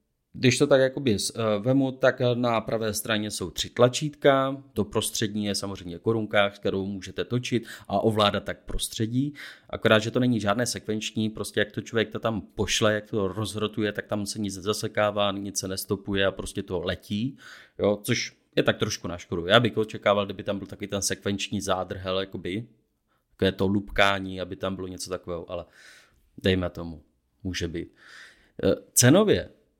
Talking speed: 170 wpm